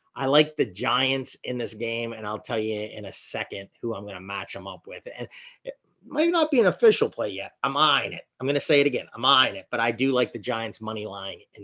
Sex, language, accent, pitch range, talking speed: male, English, American, 125-160 Hz, 270 wpm